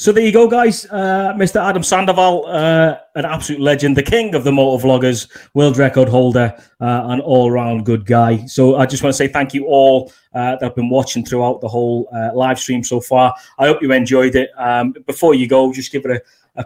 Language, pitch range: English, 120-145 Hz